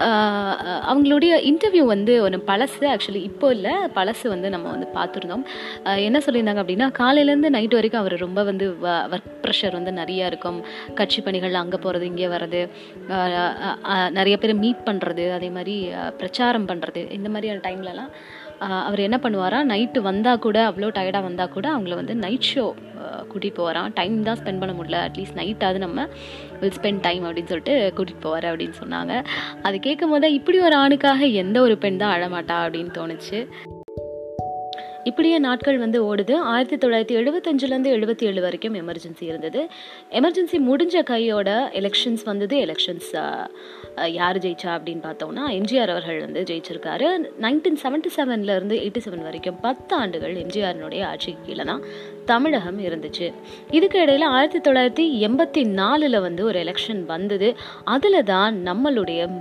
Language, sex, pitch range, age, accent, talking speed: Tamil, female, 180-255 Hz, 20-39, native, 140 wpm